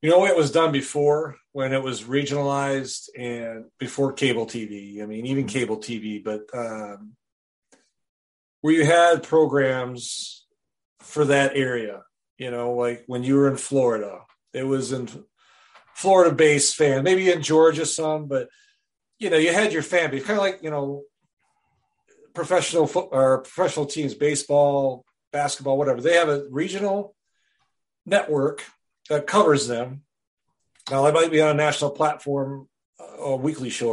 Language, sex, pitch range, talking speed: English, male, 125-160 Hz, 155 wpm